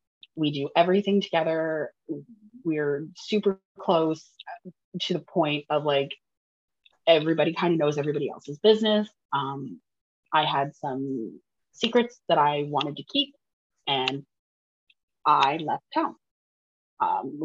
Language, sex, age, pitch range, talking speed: English, female, 20-39, 155-195 Hz, 115 wpm